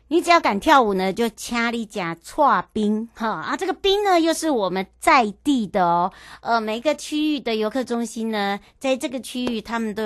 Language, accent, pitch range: Chinese, American, 175-245 Hz